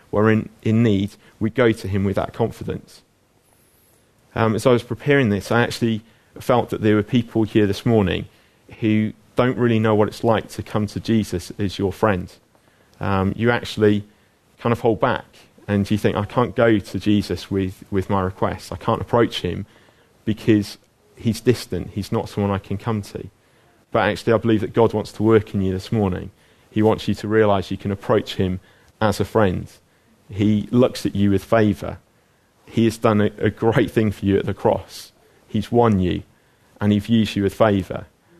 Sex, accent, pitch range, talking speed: male, British, 100-115 Hz, 195 wpm